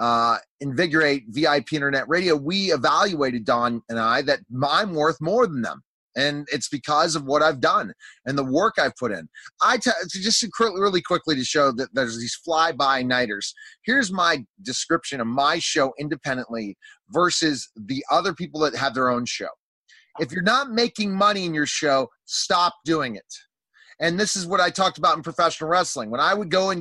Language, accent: English, American